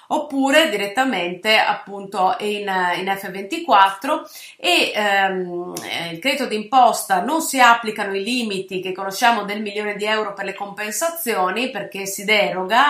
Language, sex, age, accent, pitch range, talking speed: Italian, female, 30-49, native, 195-250 Hz, 130 wpm